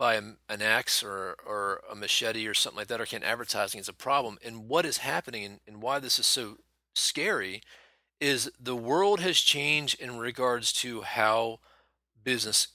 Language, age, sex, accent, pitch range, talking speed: English, 30-49, male, American, 105-135 Hz, 185 wpm